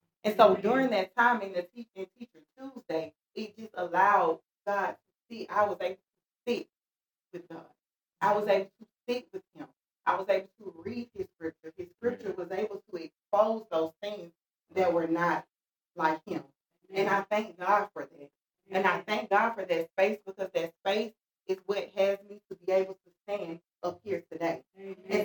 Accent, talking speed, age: American, 190 wpm, 30-49